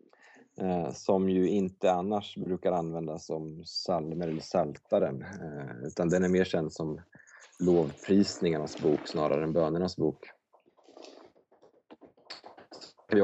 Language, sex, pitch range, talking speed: Swedish, male, 85-100 Hz, 105 wpm